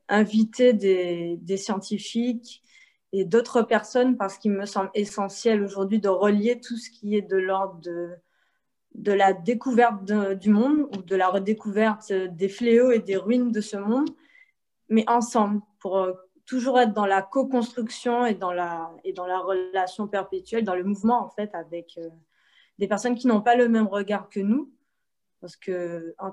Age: 20-39